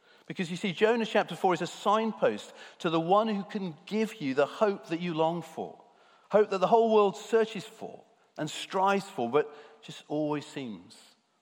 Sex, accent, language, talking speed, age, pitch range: male, British, English, 190 wpm, 50-69, 120-185 Hz